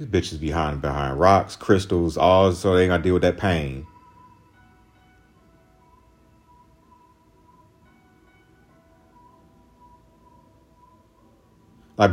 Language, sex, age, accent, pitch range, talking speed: English, male, 40-59, American, 100-145 Hz, 90 wpm